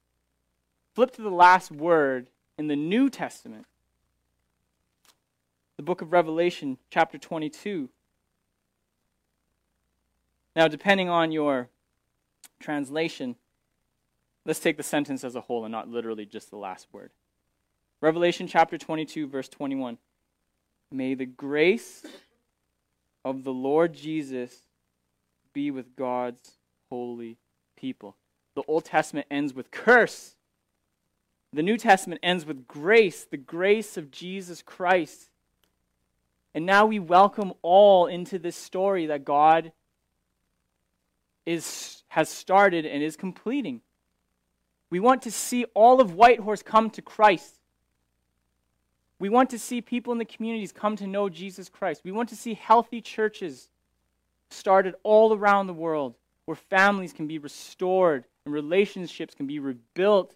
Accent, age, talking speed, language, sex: American, 20-39, 125 wpm, English, male